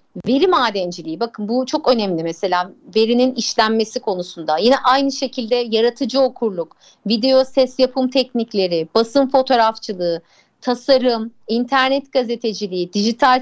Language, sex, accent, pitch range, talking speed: Turkish, female, native, 225-290 Hz, 110 wpm